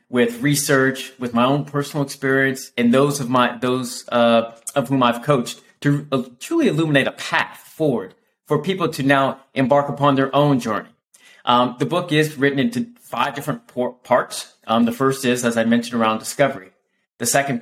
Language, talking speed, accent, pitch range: English, 180 wpm, American, 120-140 Hz